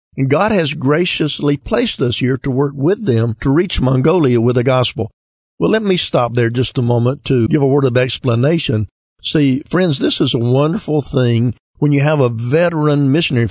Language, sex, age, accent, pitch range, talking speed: English, male, 50-69, American, 125-150 Hz, 195 wpm